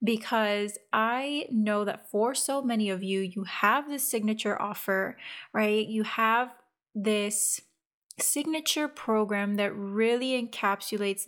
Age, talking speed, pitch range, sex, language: 20-39, 120 wpm, 215-265 Hz, female, English